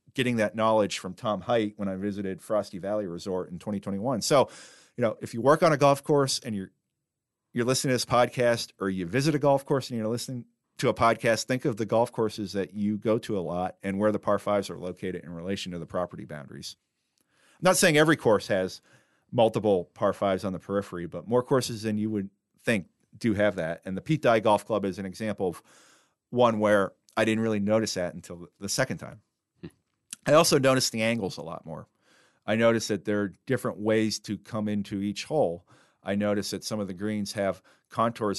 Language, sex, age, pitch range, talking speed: English, male, 40-59, 95-115 Hz, 215 wpm